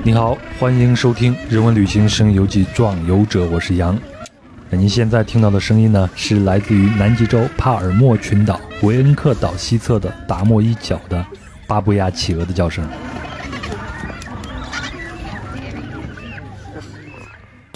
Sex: male